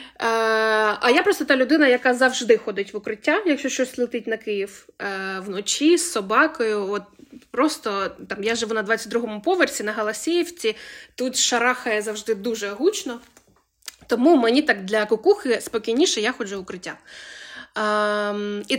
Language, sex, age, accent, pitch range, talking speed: Ukrainian, female, 20-39, native, 210-290 Hz, 140 wpm